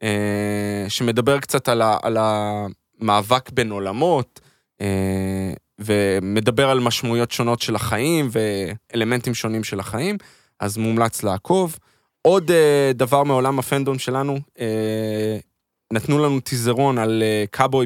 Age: 20-39